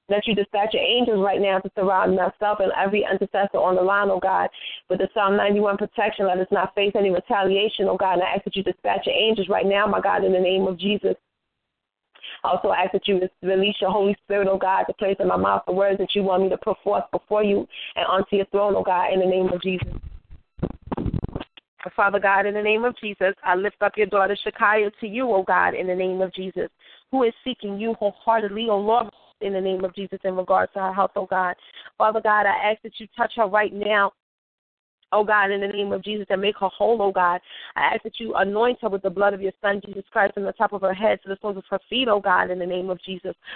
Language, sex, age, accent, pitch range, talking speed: English, female, 30-49, American, 190-215 Hz, 260 wpm